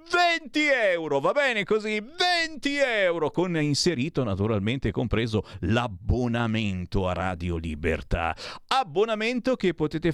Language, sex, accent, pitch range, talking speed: Italian, male, native, 100-160 Hz, 105 wpm